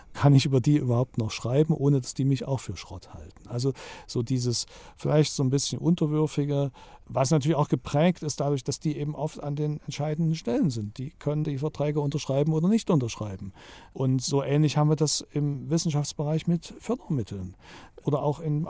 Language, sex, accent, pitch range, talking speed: German, male, German, 120-155 Hz, 190 wpm